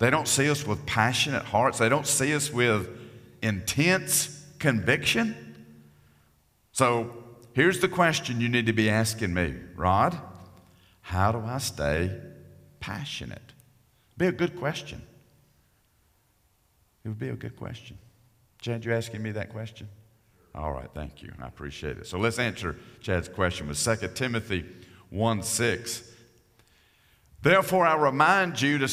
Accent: American